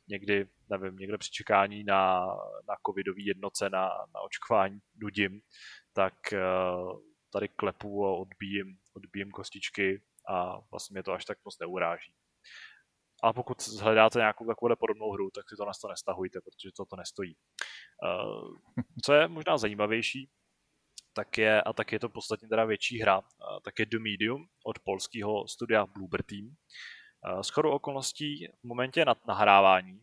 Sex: male